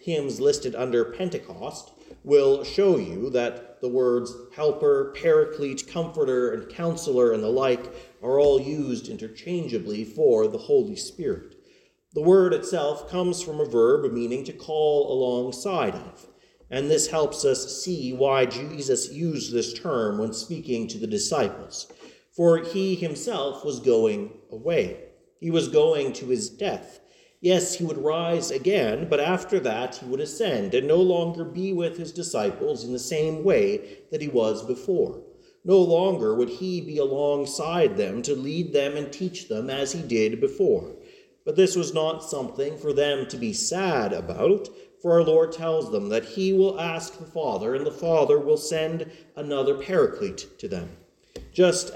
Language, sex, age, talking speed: English, male, 40-59, 160 wpm